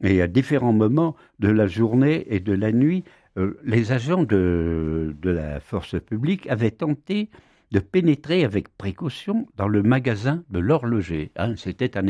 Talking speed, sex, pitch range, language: 165 wpm, male, 100-150 Hz, French